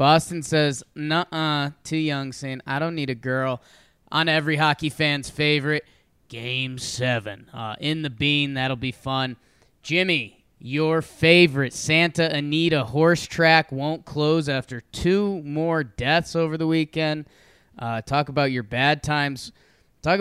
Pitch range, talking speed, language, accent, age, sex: 135-165 Hz, 145 wpm, English, American, 20-39, male